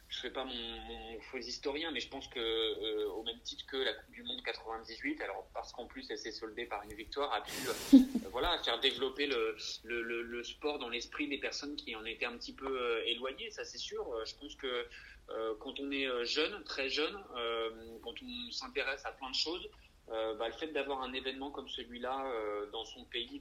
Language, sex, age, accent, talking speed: French, male, 30-49, French, 220 wpm